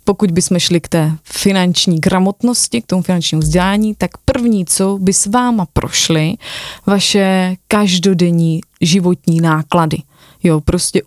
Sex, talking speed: female, 130 wpm